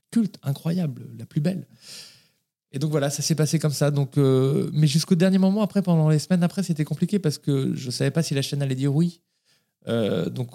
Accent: French